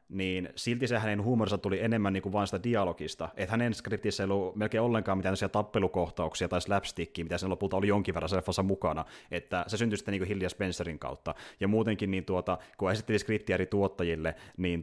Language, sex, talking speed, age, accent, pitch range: Finnish, male, 195 wpm, 30-49, native, 90-125 Hz